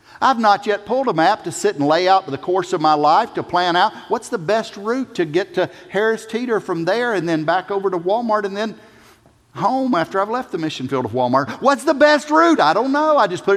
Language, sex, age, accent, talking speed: English, male, 50-69, American, 250 wpm